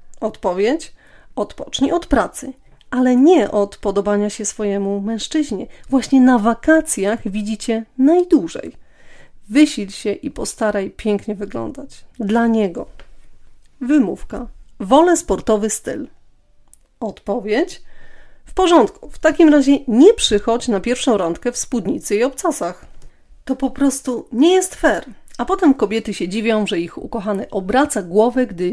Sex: female